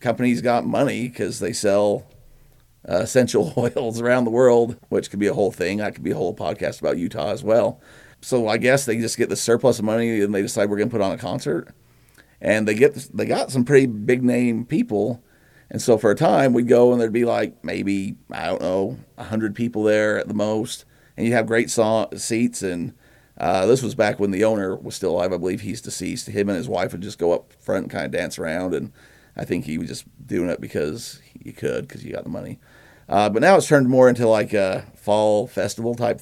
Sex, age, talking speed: male, 40-59, 235 wpm